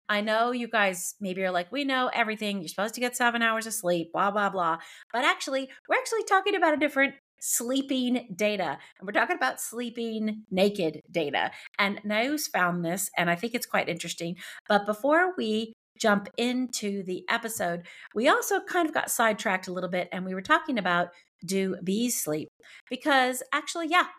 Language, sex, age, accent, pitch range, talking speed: English, female, 40-59, American, 185-255 Hz, 185 wpm